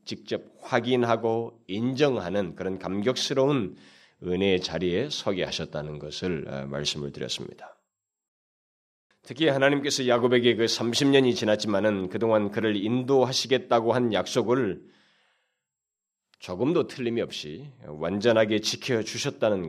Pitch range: 100-135 Hz